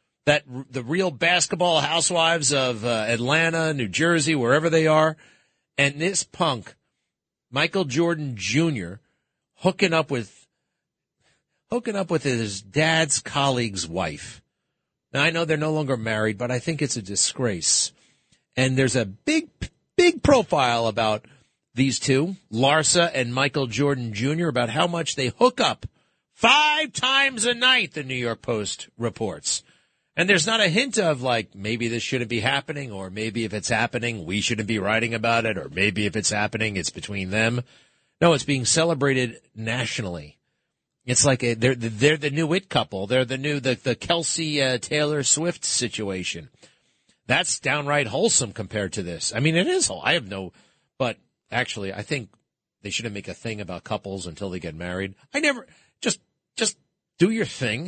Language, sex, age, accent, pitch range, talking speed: English, male, 40-59, American, 110-165 Hz, 165 wpm